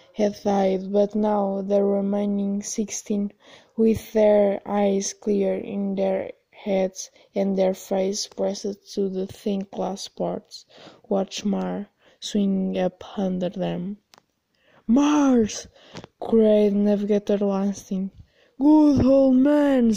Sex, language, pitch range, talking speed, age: female, English, 195-210 Hz, 110 wpm, 20-39